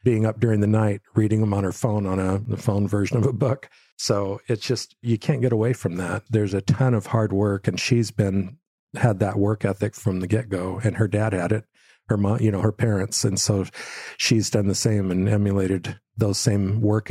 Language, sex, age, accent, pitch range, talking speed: English, male, 50-69, American, 100-115 Hz, 230 wpm